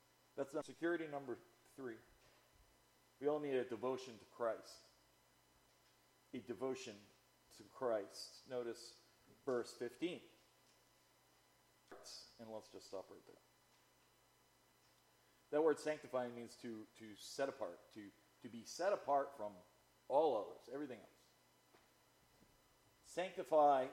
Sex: male